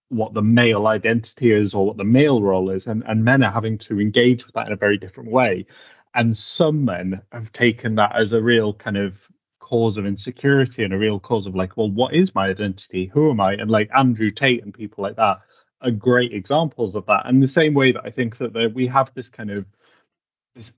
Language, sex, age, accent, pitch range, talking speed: English, male, 30-49, British, 110-135 Hz, 230 wpm